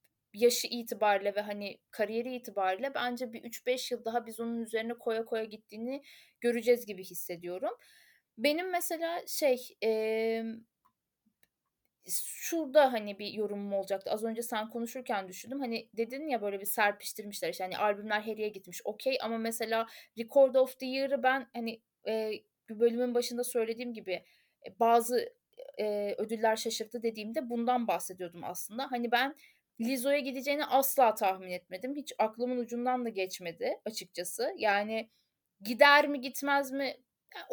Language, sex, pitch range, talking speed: Turkish, female, 215-275 Hz, 140 wpm